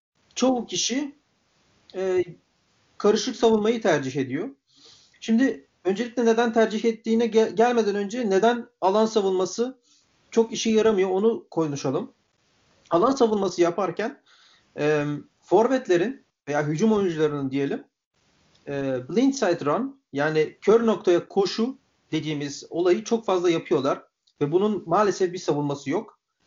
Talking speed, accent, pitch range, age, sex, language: 110 wpm, native, 155-230 Hz, 40-59, male, Turkish